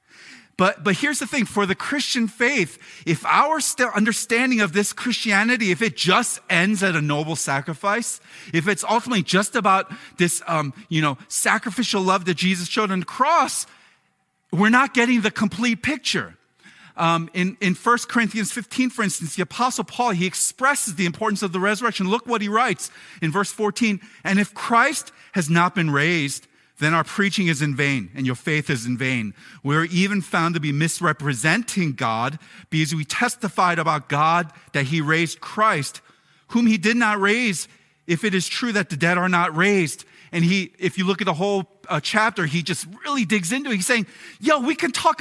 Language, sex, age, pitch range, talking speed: English, male, 40-59, 170-245 Hz, 190 wpm